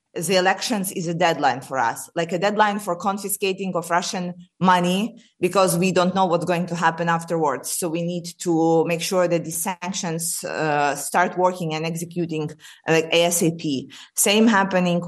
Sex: female